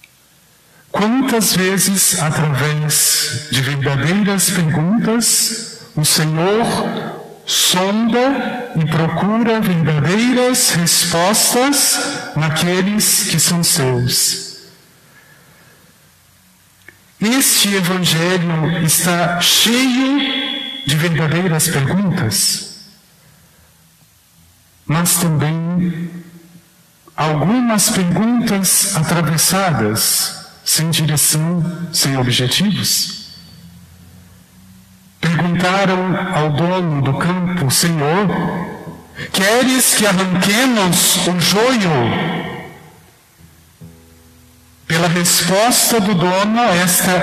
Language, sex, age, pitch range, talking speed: Portuguese, male, 50-69, 155-195 Hz, 65 wpm